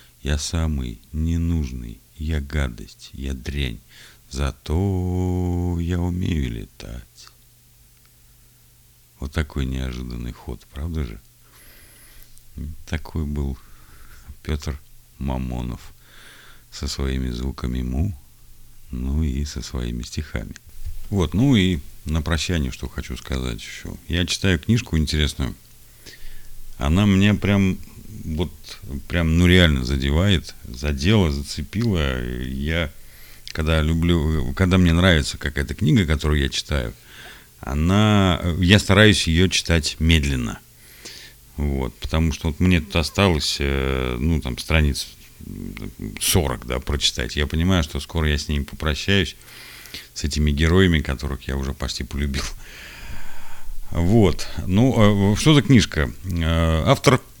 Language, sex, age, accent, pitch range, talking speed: Russian, male, 50-69, native, 65-90 Hz, 110 wpm